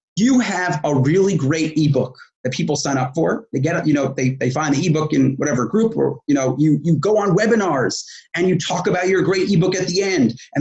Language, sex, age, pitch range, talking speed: English, male, 30-49, 145-195 Hz, 240 wpm